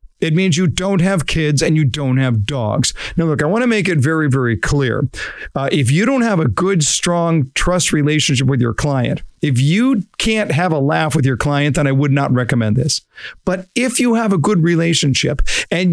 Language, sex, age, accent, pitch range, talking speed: English, male, 50-69, American, 135-195 Hz, 215 wpm